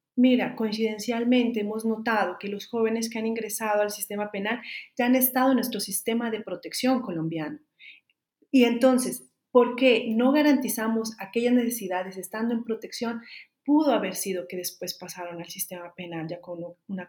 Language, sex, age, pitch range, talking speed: Spanish, female, 40-59, 195-240 Hz, 160 wpm